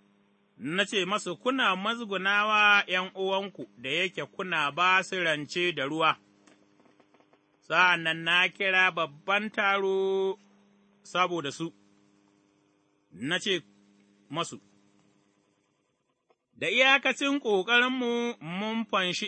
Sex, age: male, 30-49